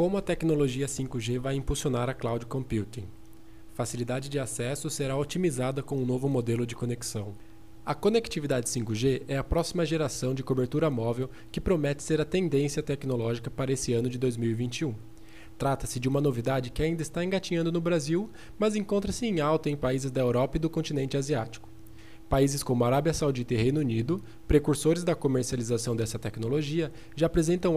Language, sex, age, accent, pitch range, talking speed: Portuguese, male, 20-39, Brazilian, 120-155 Hz, 165 wpm